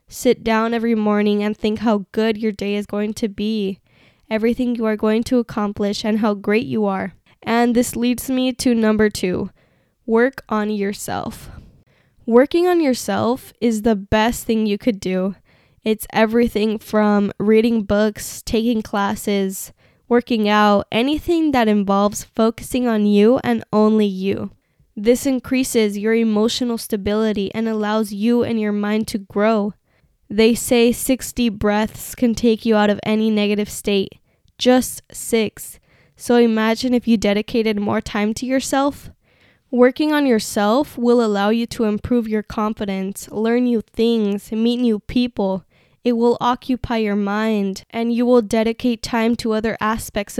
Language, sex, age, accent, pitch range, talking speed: English, female, 10-29, American, 210-235 Hz, 155 wpm